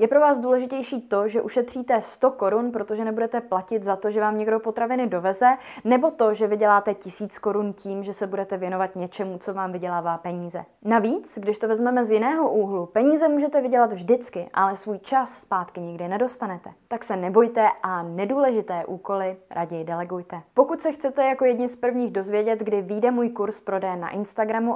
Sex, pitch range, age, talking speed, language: female, 190-240 Hz, 20-39, 180 wpm, Czech